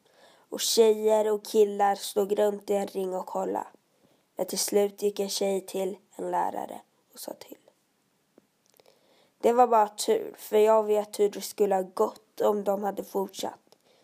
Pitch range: 200-230 Hz